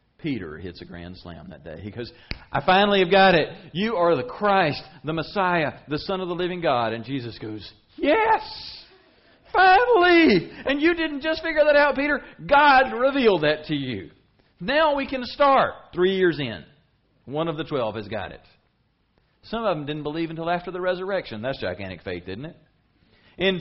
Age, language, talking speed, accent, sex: 40-59, English, 185 wpm, American, male